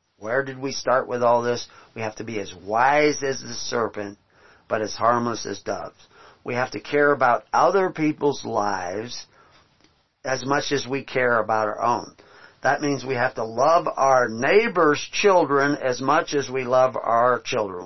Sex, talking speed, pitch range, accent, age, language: male, 180 wpm, 120-160 Hz, American, 40-59, English